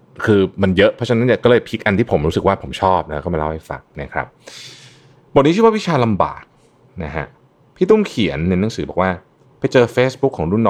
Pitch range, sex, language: 80-115 Hz, male, Thai